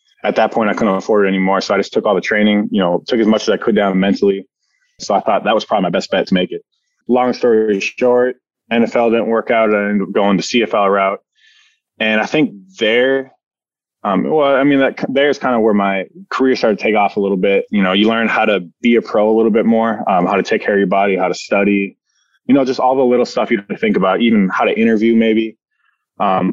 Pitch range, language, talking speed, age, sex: 95-115 Hz, English, 255 wpm, 20-39, male